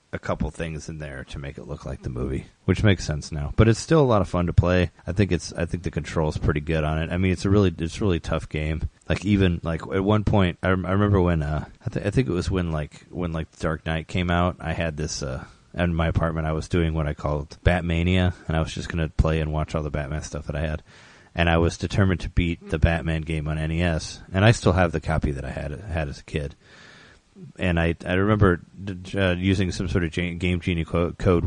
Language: English